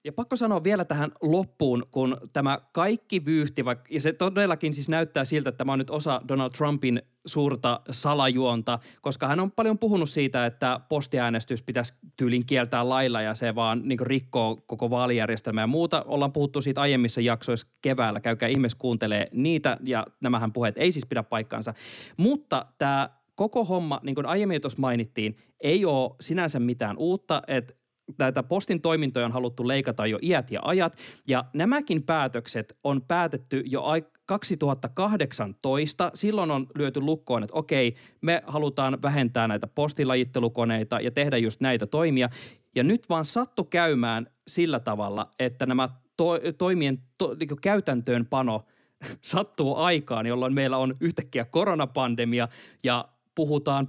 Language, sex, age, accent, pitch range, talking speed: Finnish, male, 20-39, native, 120-160 Hz, 150 wpm